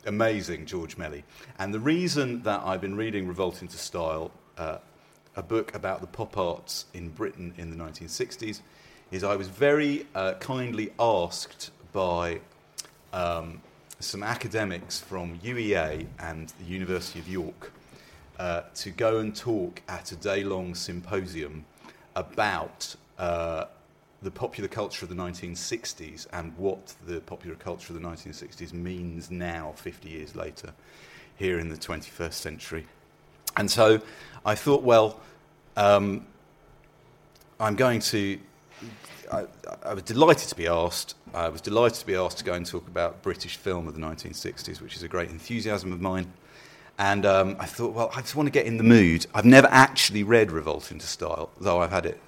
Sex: male